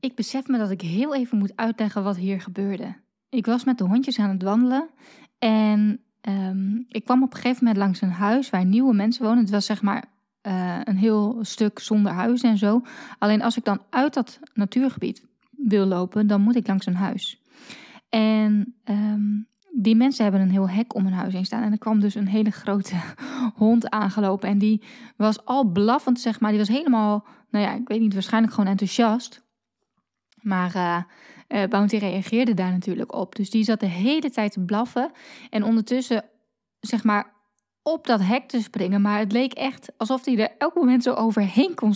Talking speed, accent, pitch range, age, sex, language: 195 wpm, Dutch, 200-240 Hz, 20-39, female, Dutch